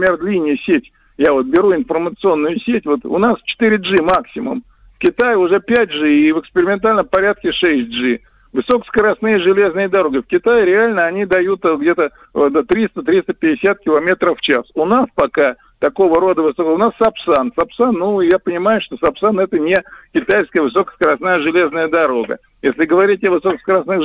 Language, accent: Russian, native